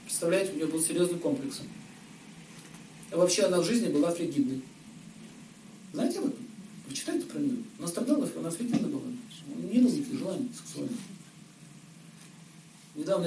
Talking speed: 130 wpm